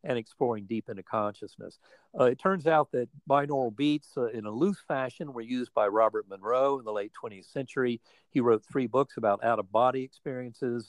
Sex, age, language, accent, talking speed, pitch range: male, 50-69, English, American, 185 wpm, 115-140 Hz